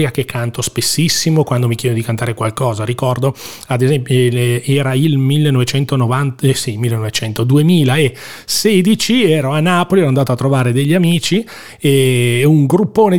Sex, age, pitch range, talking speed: male, 30-49, 120-145 Hz, 140 wpm